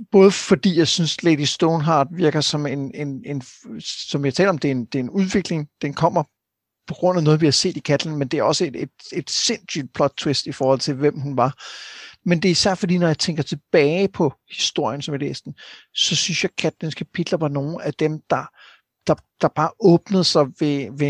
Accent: native